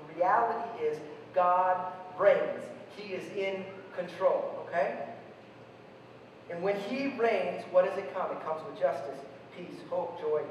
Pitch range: 185-285 Hz